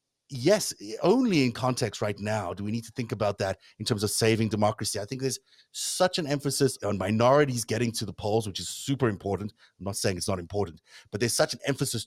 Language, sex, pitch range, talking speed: English, male, 100-135 Hz, 225 wpm